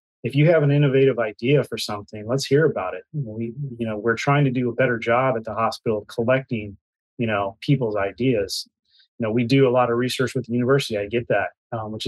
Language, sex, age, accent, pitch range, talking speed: English, male, 30-49, American, 115-130 Hz, 235 wpm